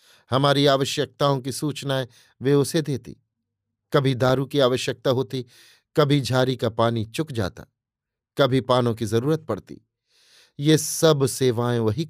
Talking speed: 135 wpm